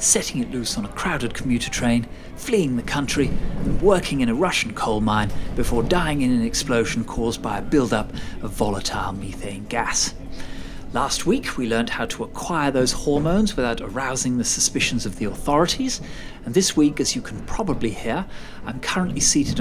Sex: male